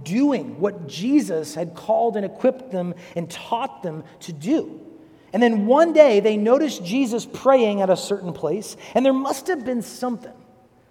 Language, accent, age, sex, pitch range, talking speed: English, American, 40-59, male, 165-235 Hz, 170 wpm